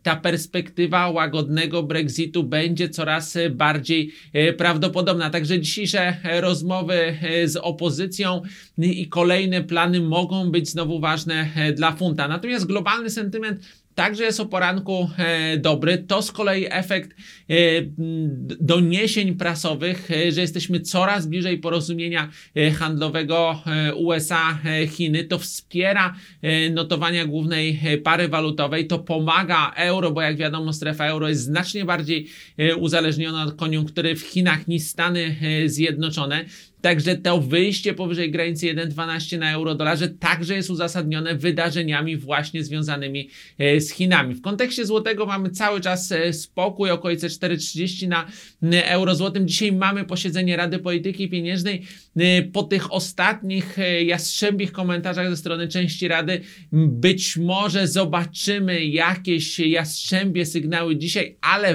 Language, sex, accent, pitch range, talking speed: Polish, male, native, 160-180 Hz, 120 wpm